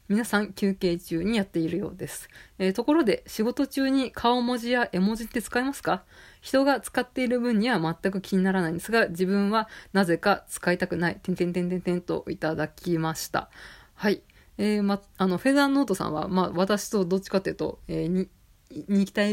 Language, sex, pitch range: Japanese, female, 175-230 Hz